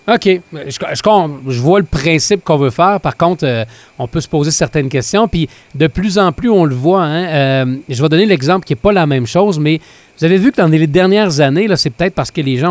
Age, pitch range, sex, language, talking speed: 40-59, 150-205 Hz, male, French, 265 wpm